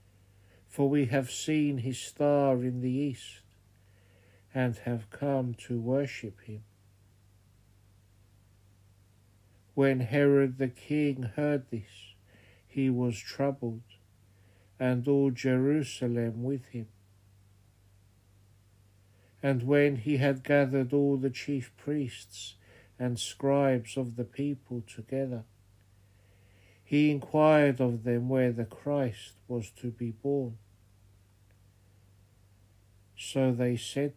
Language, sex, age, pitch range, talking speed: English, male, 60-79, 100-130 Hz, 100 wpm